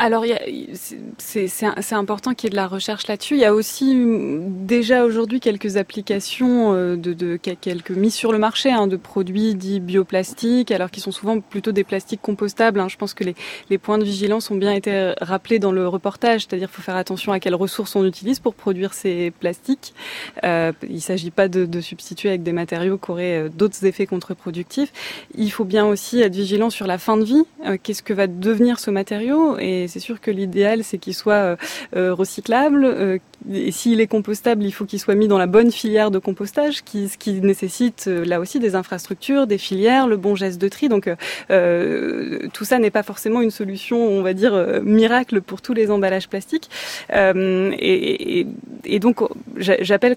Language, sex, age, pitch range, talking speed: French, female, 20-39, 190-230 Hz, 205 wpm